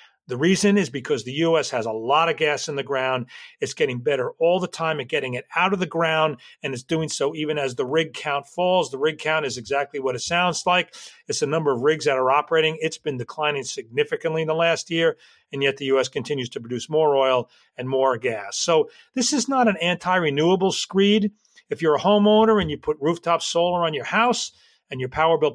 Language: English